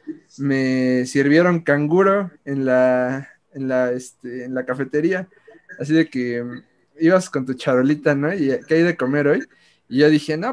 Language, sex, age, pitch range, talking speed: Spanish, male, 20-39, 130-165 Hz, 170 wpm